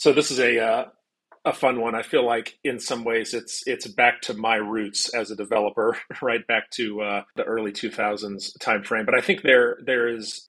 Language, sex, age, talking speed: English, male, 30-49, 210 wpm